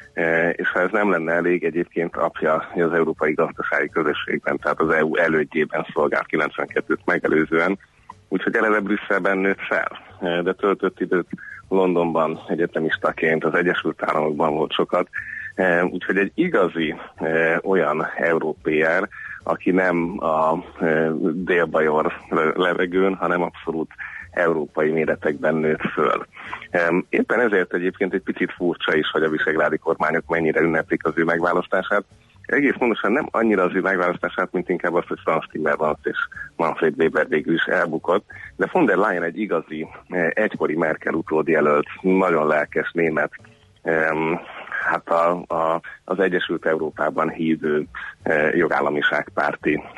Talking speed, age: 125 wpm, 30-49